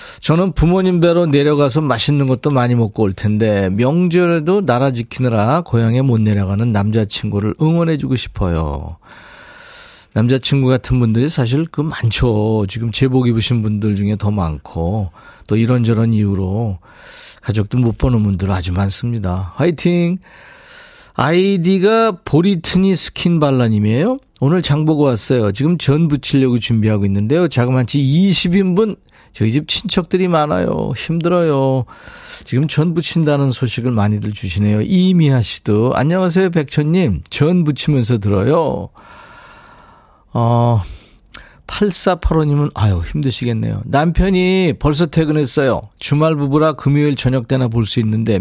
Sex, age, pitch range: male, 40-59, 110-165 Hz